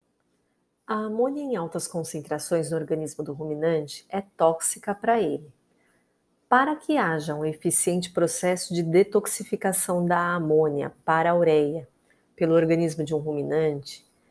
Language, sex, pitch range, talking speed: Portuguese, female, 155-195 Hz, 130 wpm